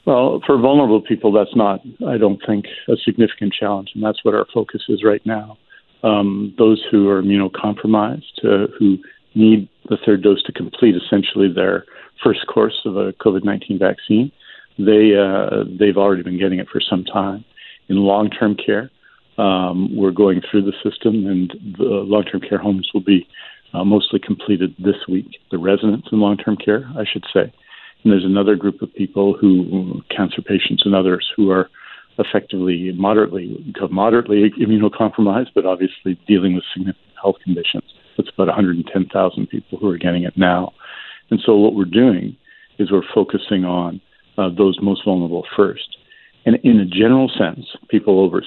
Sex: male